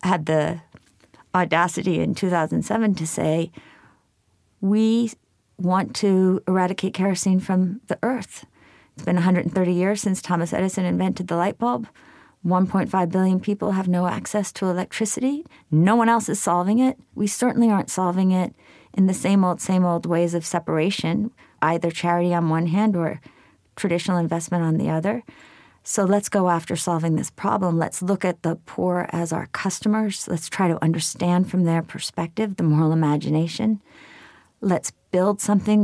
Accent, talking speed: American, 155 wpm